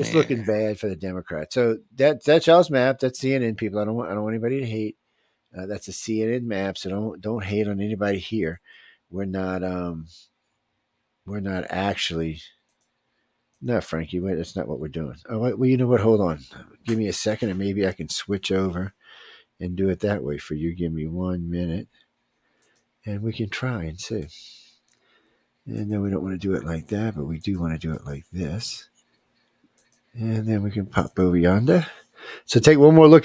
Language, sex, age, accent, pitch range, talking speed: English, male, 50-69, American, 90-120 Hz, 205 wpm